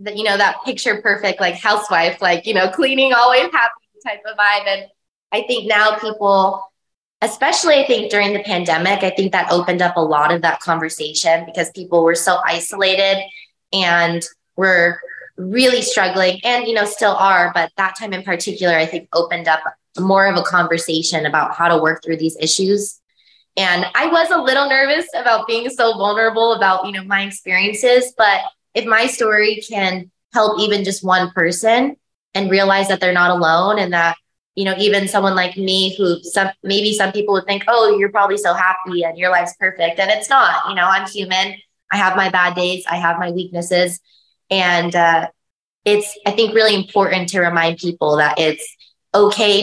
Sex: female